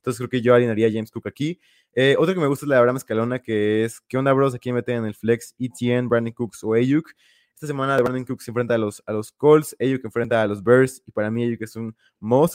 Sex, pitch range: male, 110-130 Hz